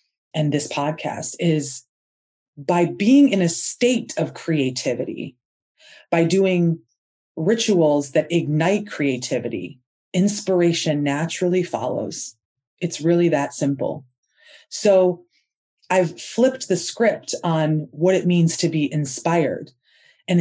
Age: 30-49